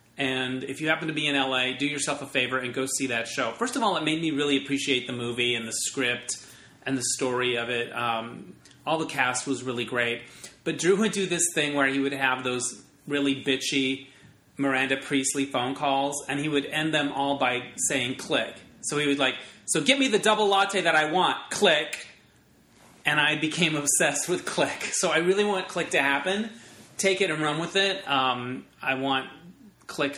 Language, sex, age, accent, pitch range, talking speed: English, male, 30-49, American, 125-155 Hz, 210 wpm